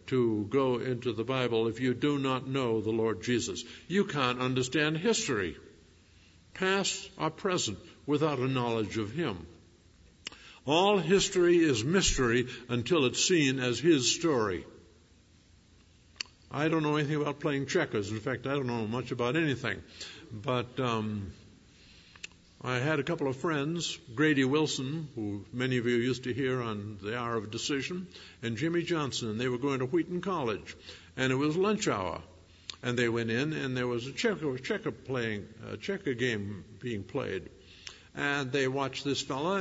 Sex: male